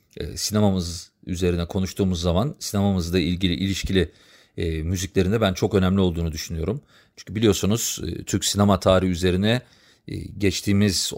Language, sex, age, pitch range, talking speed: Turkish, male, 40-59, 90-110 Hz, 105 wpm